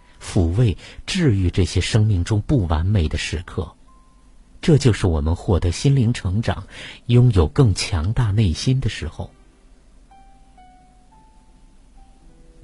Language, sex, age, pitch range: Chinese, male, 50-69, 90-120 Hz